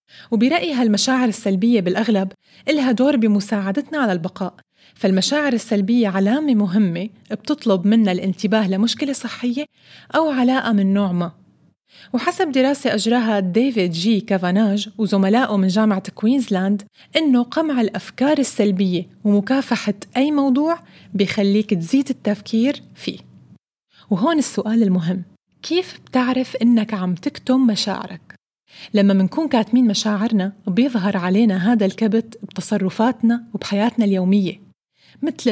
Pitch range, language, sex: 195-245 Hz, Arabic, female